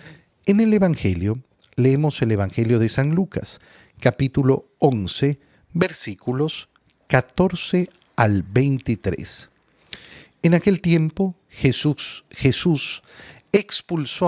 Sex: male